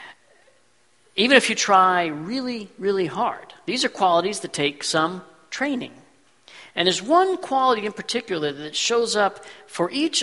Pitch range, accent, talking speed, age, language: 170-230 Hz, American, 145 wpm, 50-69, English